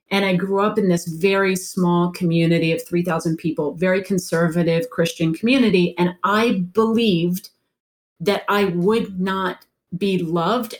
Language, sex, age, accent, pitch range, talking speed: English, female, 30-49, American, 170-200 Hz, 140 wpm